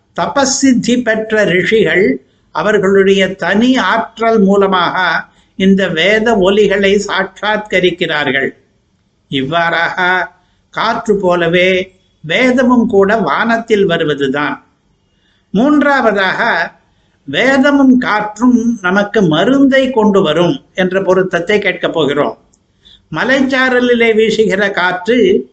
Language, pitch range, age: Tamil, 185-225 Hz, 60-79